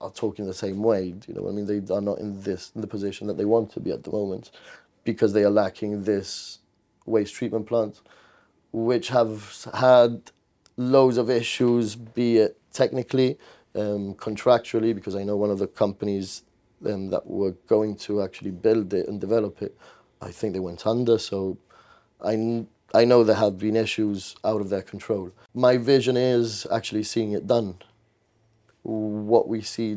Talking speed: 180 wpm